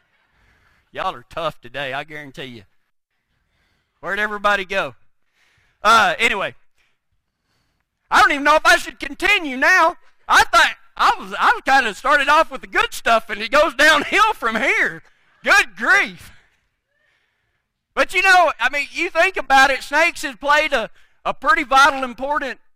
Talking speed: 155 wpm